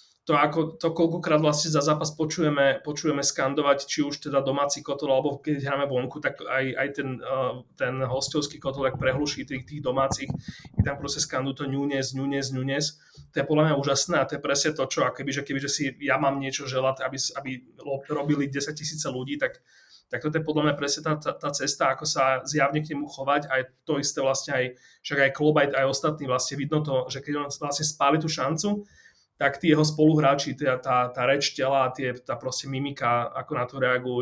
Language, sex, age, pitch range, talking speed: Slovak, male, 30-49, 135-155 Hz, 205 wpm